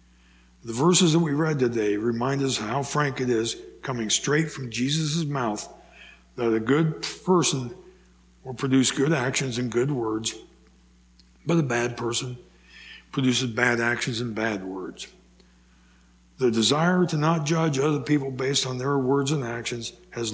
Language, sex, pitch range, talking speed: English, male, 105-140 Hz, 155 wpm